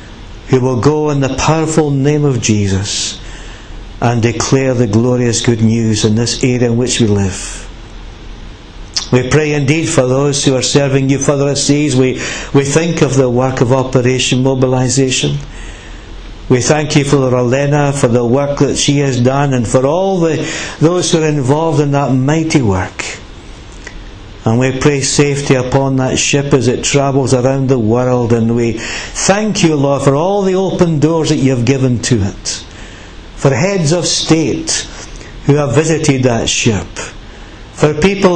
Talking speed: 165 wpm